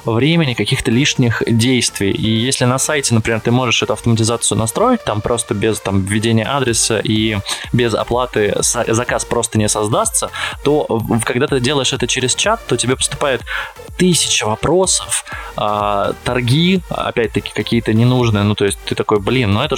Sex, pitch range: male, 110-135 Hz